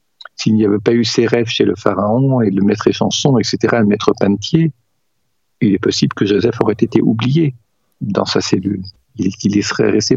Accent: French